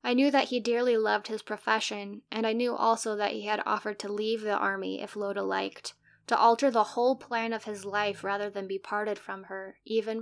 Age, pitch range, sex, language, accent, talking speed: 10-29, 195-235 Hz, female, English, American, 225 wpm